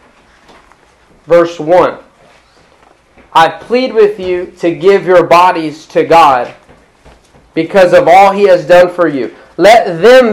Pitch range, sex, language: 170-210 Hz, male, English